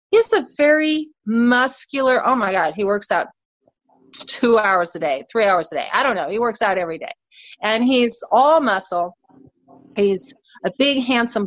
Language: English